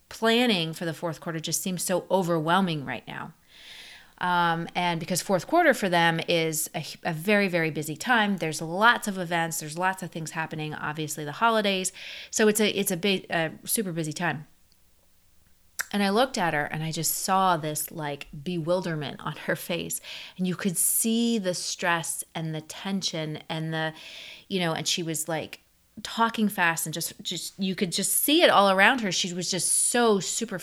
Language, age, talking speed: English, 30-49, 190 wpm